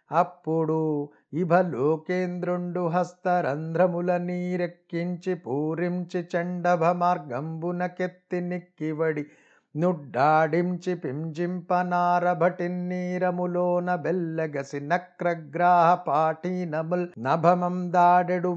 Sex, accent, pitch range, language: male, native, 160-180 Hz, Telugu